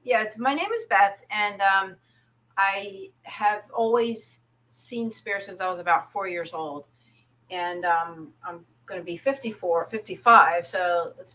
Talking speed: 155 wpm